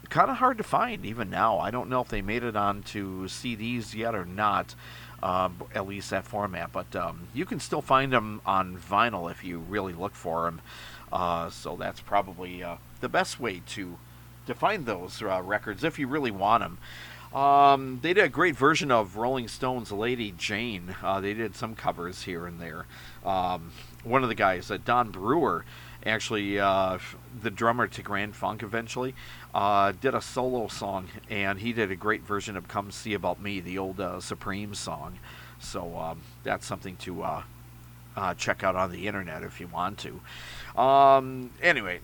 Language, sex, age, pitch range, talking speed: English, male, 50-69, 90-125 Hz, 190 wpm